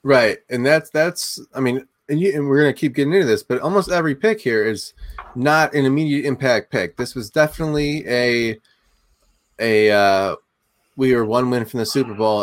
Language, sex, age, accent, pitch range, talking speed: English, male, 20-39, American, 100-130 Hz, 200 wpm